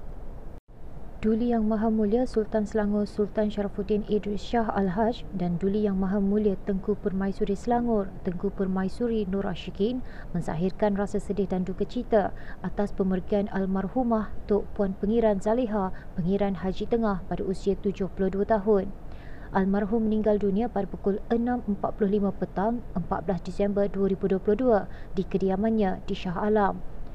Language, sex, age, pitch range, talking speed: Malay, female, 30-49, 195-225 Hz, 130 wpm